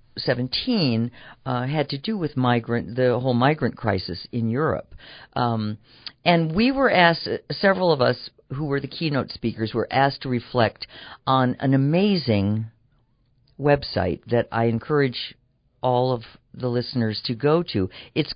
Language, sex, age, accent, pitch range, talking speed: English, female, 50-69, American, 115-155 Hz, 150 wpm